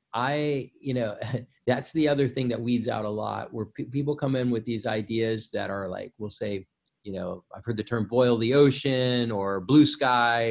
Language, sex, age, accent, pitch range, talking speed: English, male, 30-49, American, 105-140 Hz, 205 wpm